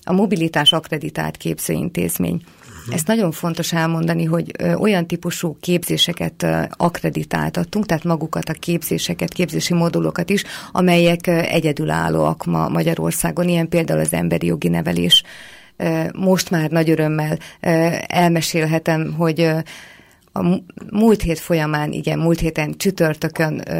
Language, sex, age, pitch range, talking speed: Hungarian, female, 30-49, 150-175 Hz, 110 wpm